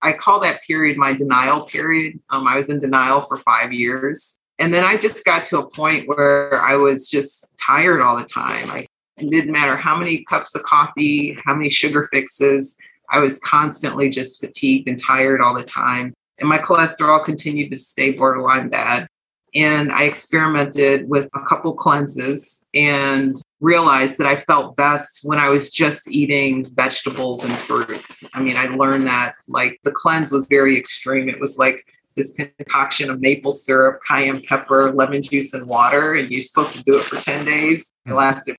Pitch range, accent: 135-150 Hz, American